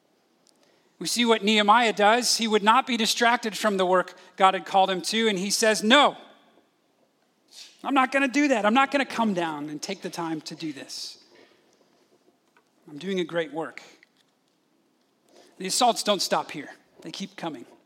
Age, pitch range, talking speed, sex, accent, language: 40-59, 180-235 Hz, 180 wpm, male, American, English